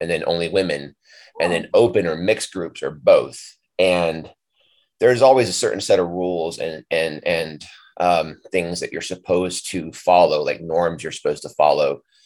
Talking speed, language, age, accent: 175 wpm, English, 30-49, American